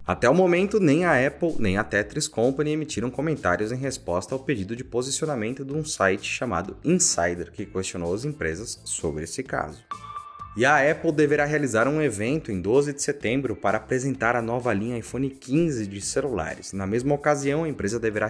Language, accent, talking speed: Portuguese, Brazilian, 185 wpm